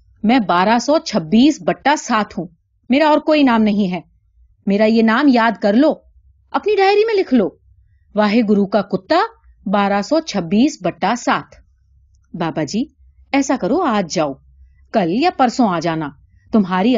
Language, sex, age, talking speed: Urdu, female, 30-49, 155 wpm